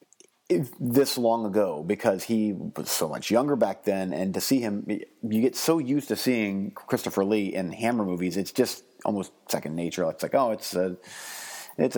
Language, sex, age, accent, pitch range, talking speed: English, male, 30-49, American, 95-115 Hz, 185 wpm